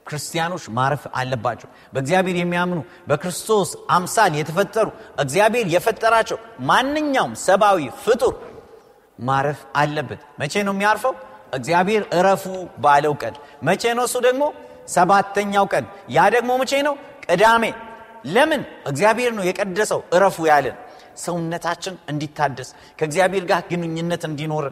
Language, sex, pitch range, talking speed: Amharic, male, 135-200 Hz, 110 wpm